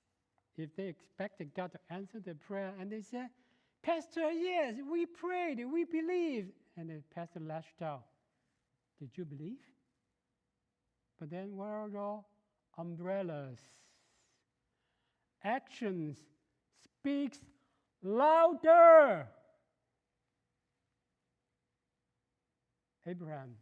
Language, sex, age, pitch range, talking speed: English, male, 60-79, 145-200 Hz, 90 wpm